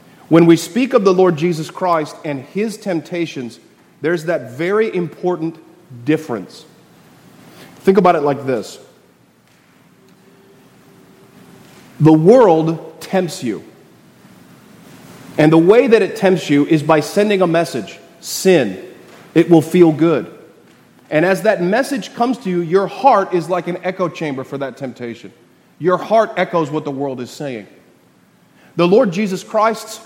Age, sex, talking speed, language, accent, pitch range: 40-59, male, 140 wpm, English, American, 145-180 Hz